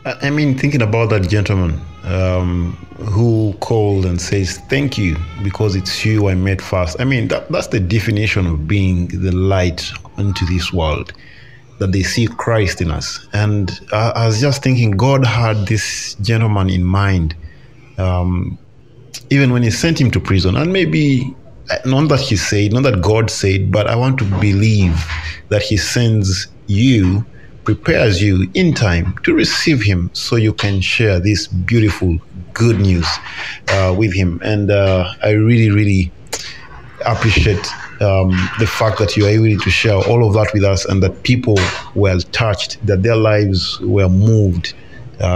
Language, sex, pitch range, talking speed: English, male, 95-120 Hz, 165 wpm